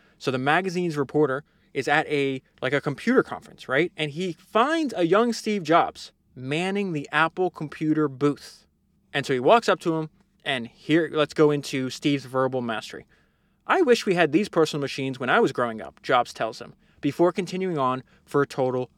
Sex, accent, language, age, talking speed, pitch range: male, American, English, 20-39, 190 wpm, 130-180 Hz